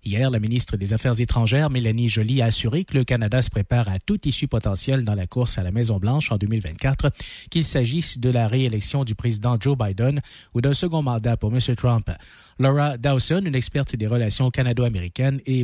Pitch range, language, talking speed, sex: 115-145 Hz, French, 195 wpm, male